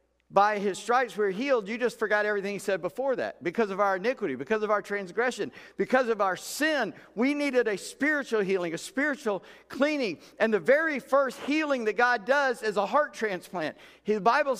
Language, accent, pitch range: English, American, 190-260 Hz